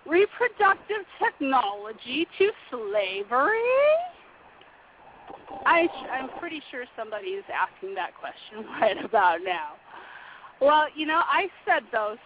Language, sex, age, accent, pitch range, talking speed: English, female, 40-59, American, 225-335 Hz, 105 wpm